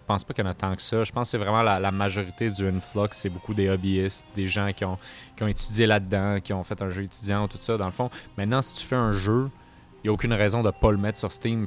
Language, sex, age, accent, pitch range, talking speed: French, male, 30-49, Canadian, 95-115 Hz, 320 wpm